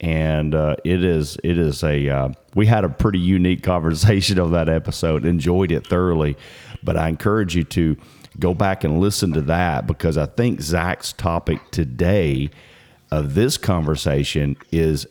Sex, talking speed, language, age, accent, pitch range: male, 165 wpm, English, 40-59, American, 80-95 Hz